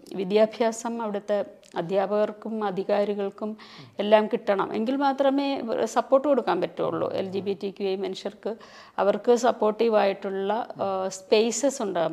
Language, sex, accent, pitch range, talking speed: Malayalam, female, native, 200-250 Hz, 100 wpm